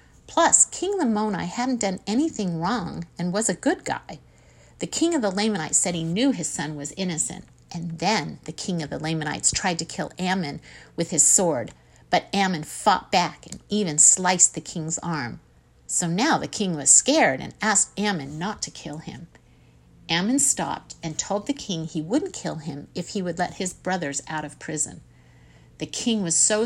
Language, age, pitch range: English, 50-69, 160-220 Hz